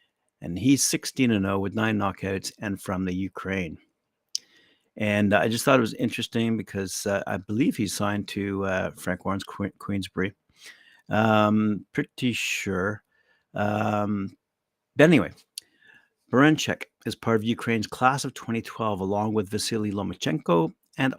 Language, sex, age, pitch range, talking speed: English, male, 60-79, 100-115 Hz, 135 wpm